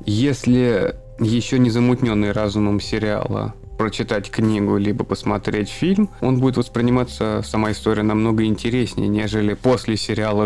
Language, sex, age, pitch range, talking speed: Russian, male, 20-39, 105-130 Hz, 120 wpm